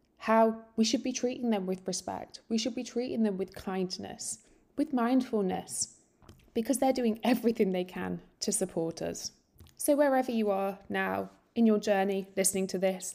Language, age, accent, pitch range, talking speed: English, 20-39, British, 185-230 Hz, 170 wpm